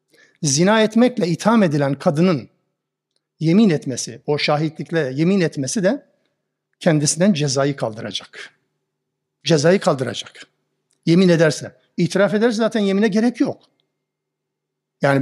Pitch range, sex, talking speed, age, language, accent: 150-195 Hz, male, 105 wpm, 60-79, Turkish, native